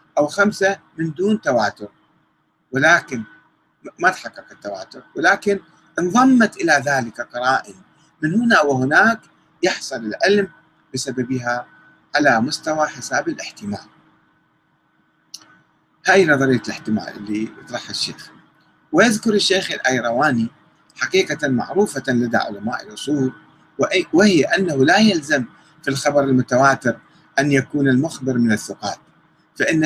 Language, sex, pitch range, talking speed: Arabic, male, 120-190 Hz, 105 wpm